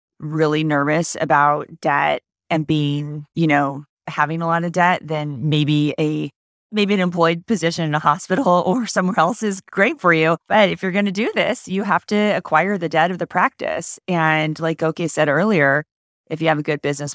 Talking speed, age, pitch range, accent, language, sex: 200 wpm, 30-49, 150-180 Hz, American, English, female